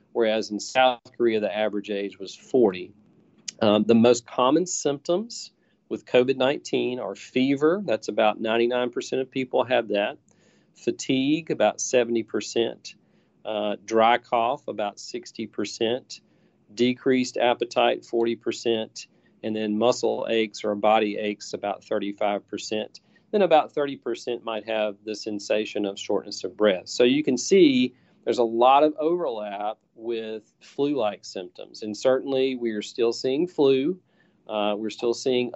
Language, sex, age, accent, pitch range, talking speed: English, male, 40-59, American, 105-130 Hz, 135 wpm